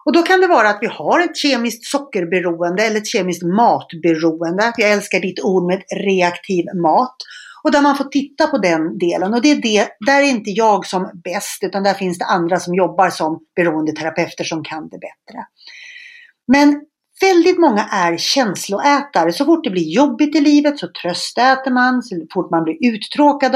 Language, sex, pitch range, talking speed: English, female, 175-275 Hz, 190 wpm